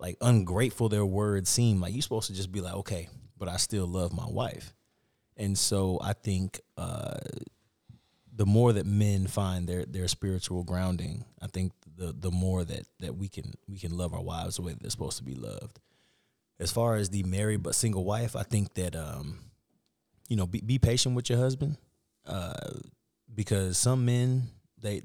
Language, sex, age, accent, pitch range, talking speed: English, male, 30-49, American, 95-120 Hz, 190 wpm